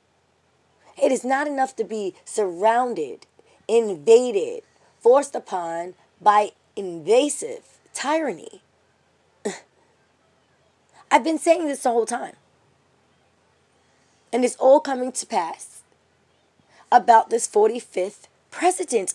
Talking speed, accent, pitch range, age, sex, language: 95 wpm, American, 230-345 Hz, 20-39, female, English